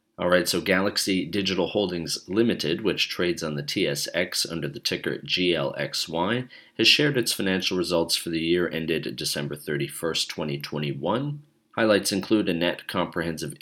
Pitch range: 75-105 Hz